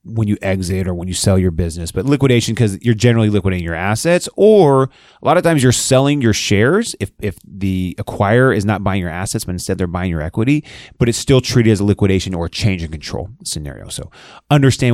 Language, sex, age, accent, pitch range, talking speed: English, male, 30-49, American, 90-120 Hz, 225 wpm